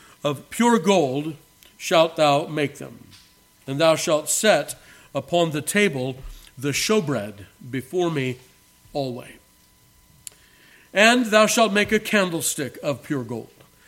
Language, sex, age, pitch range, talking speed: English, male, 50-69, 145-185 Hz, 120 wpm